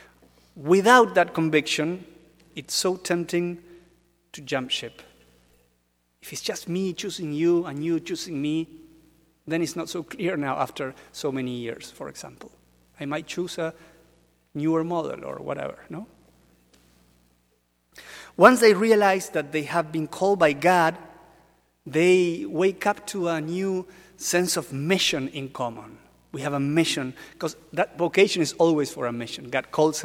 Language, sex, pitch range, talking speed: English, male, 125-175 Hz, 150 wpm